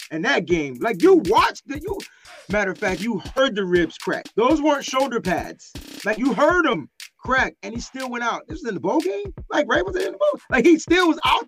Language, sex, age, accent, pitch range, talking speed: English, male, 30-49, American, 185-295 Hz, 245 wpm